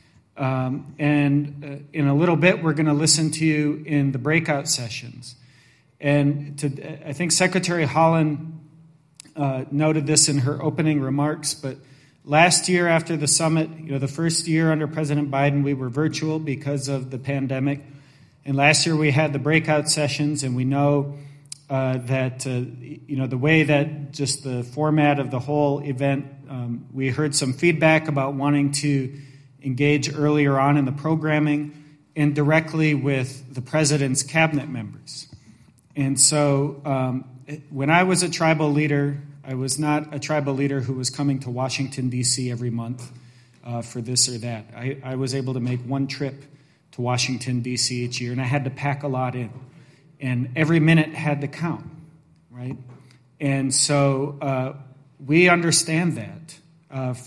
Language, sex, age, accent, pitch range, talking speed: English, male, 40-59, American, 130-155 Hz, 170 wpm